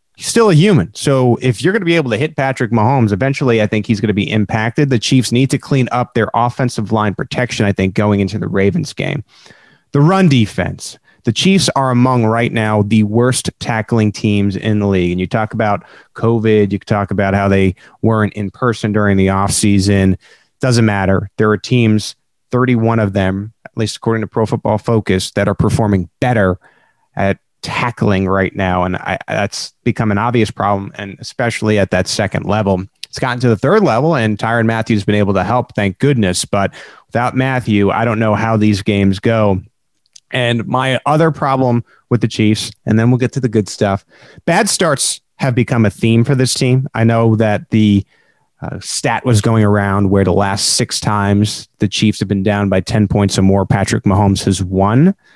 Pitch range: 100-120 Hz